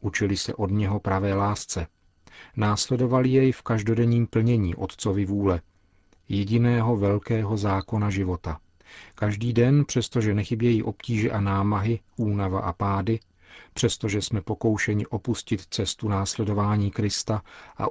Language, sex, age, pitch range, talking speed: Czech, male, 40-59, 95-115 Hz, 115 wpm